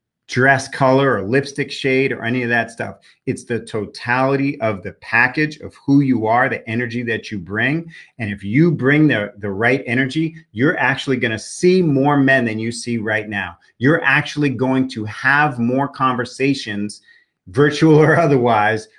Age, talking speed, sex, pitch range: 40-59, 170 wpm, male, 115-145 Hz